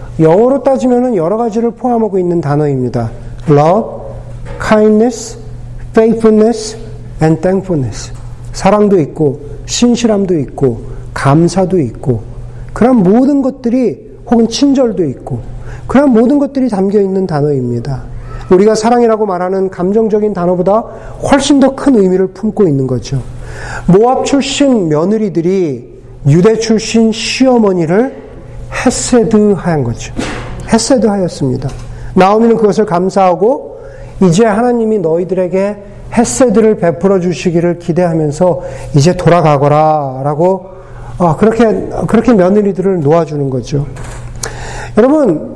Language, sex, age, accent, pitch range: Korean, male, 40-59, native, 135-220 Hz